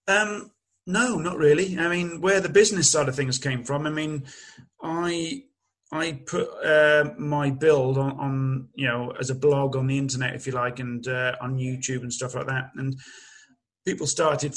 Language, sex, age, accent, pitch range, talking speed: English, male, 30-49, British, 130-155 Hz, 190 wpm